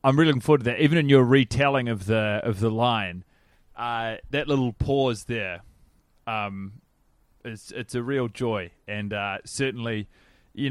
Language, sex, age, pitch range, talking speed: English, male, 30-49, 110-140 Hz, 170 wpm